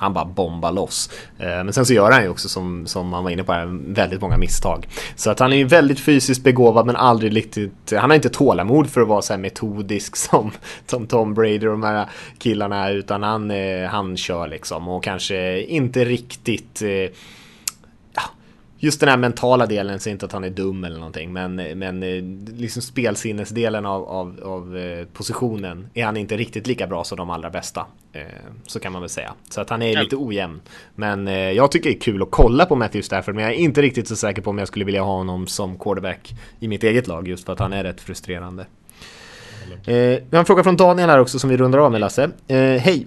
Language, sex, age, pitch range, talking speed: Swedish, male, 20-39, 95-130 Hz, 215 wpm